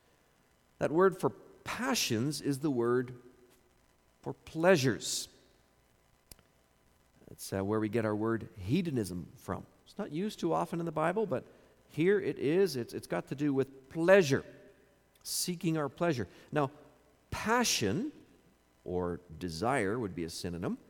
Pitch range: 115-180 Hz